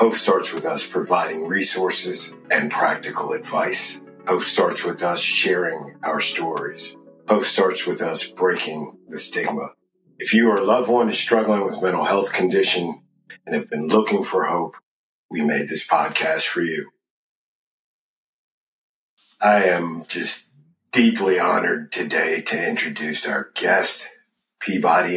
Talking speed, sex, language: 140 wpm, male, English